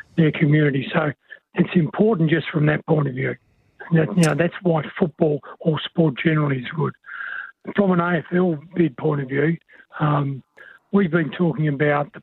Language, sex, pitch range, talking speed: English, male, 150-170 Hz, 170 wpm